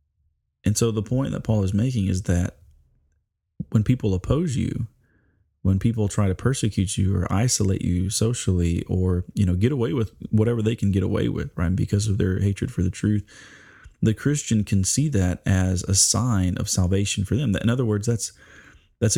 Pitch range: 95-120 Hz